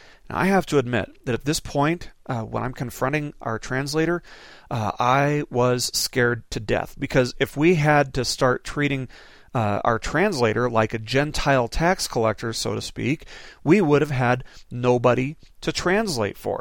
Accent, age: American, 40-59